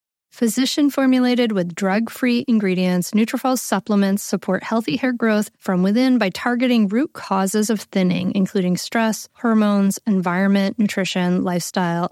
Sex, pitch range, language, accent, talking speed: female, 190-240 Hz, English, American, 120 wpm